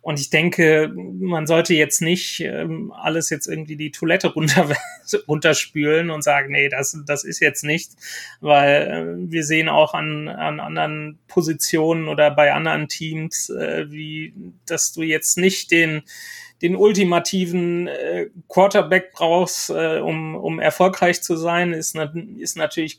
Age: 30-49